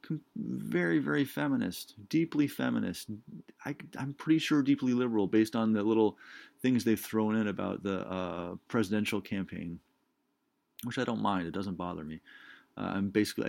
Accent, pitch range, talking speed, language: American, 100-125 Hz, 155 wpm, English